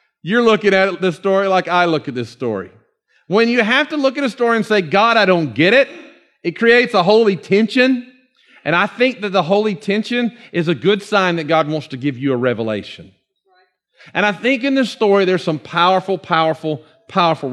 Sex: male